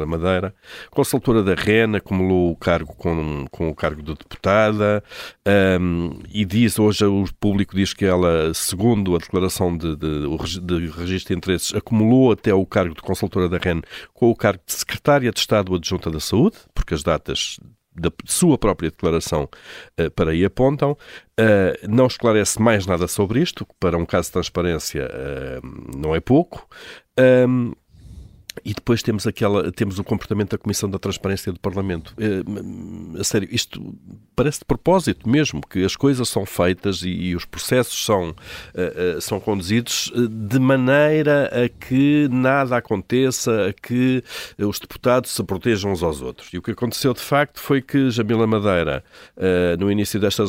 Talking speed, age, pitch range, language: 165 wpm, 50-69, 90-115 Hz, Portuguese